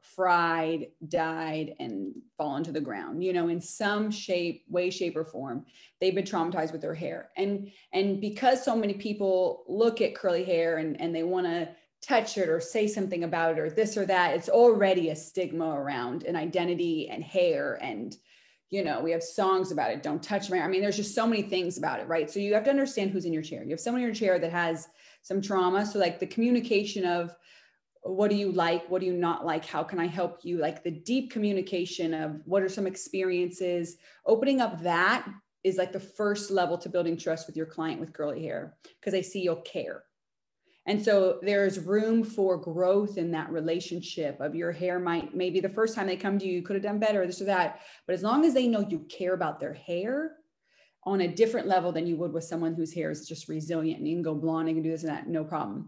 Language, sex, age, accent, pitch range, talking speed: English, female, 20-39, American, 165-200 Hz, 230 wpm